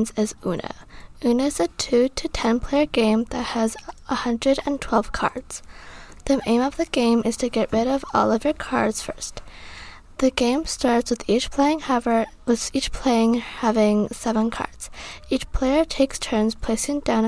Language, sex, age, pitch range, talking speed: English, female, 20-39, 220-270 Hz, 165 wpm